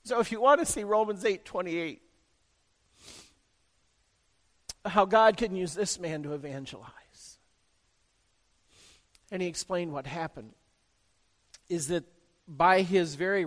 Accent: American